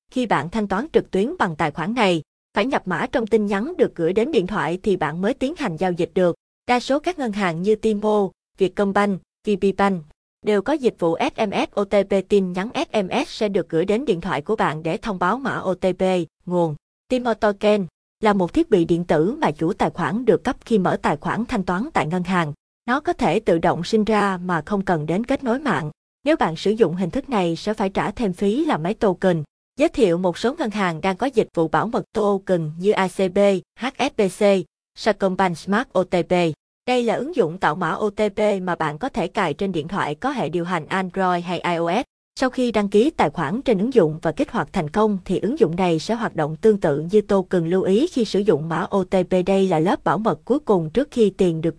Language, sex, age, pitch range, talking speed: Vietnamese, female, 20-39, 175-220 Hz, 225 wpm